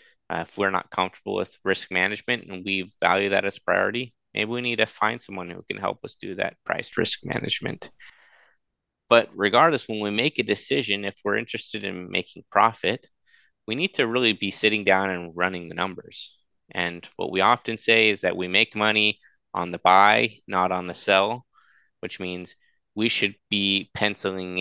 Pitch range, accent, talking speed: 90-110 Hz, American, 185 wpm